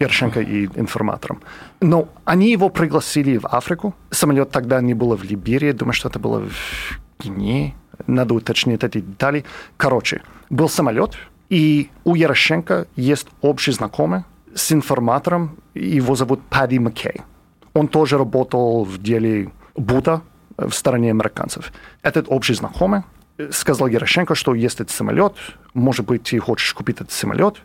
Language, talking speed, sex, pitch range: Russian, 140 wpm, male, 120-155 Hz